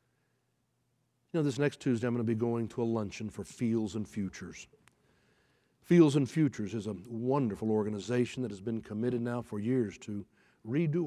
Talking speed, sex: 175 wpm, male